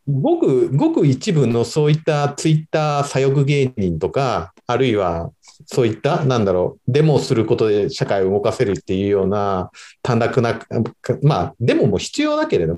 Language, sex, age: Japanese, male, 40-59